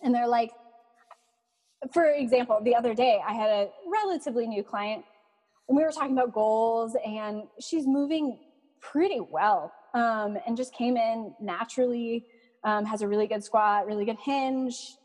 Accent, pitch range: American, 230-300 Hz